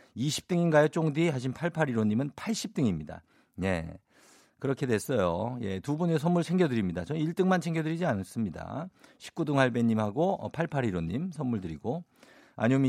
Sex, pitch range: male, 100-145 Hz